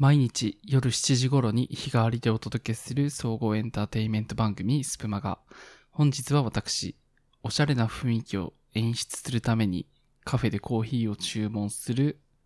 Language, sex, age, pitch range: Japanese, male, 20-39, 100-135 Hz